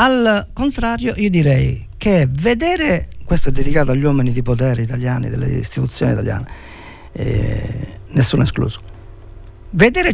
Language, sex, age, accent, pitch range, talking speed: Italian, male, 50-69, native, 125-195 Hz, 130 wpm